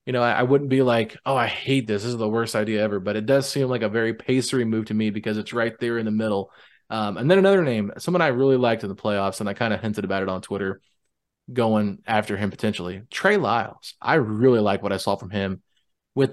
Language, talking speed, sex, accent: English, 255 wpm, male, American